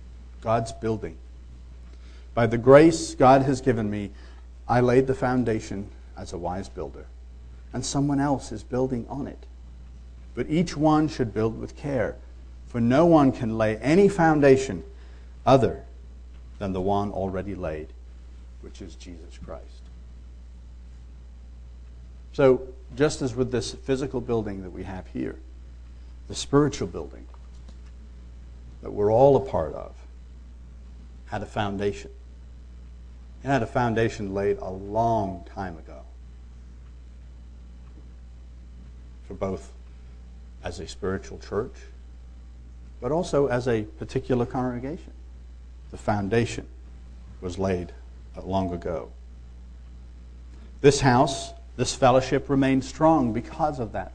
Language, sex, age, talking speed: English, male, 50-69, 120 wpm